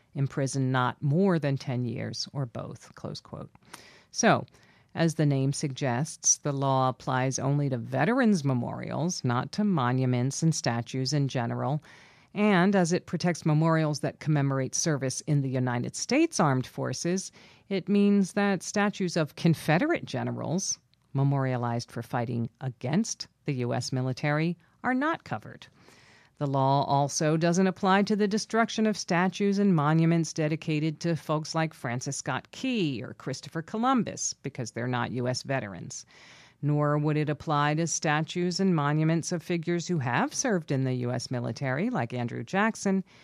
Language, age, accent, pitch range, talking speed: English, 50-69, American, 130-175 Hz, 145 wpm